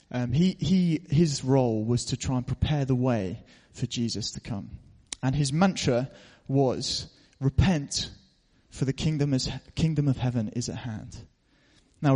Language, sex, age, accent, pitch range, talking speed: English, male, 30-49, British, 125-160 Hz, 160 wpm